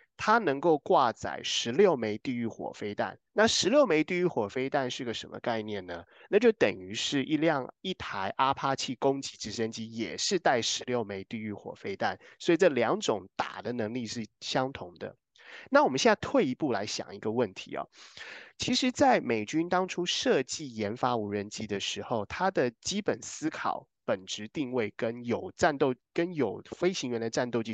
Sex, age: male, 20-39